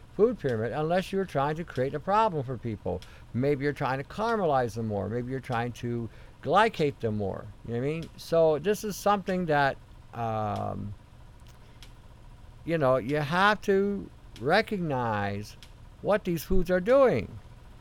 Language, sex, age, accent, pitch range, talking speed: English, male, 60-79, American, 120-200 Hz, 160 wpm